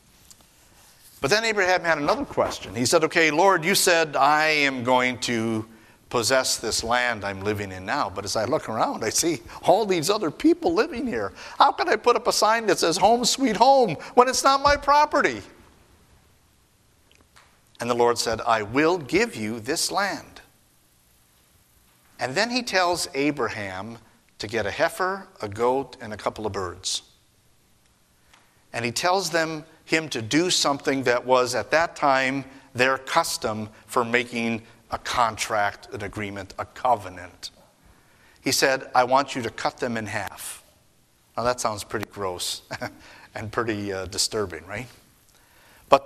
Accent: American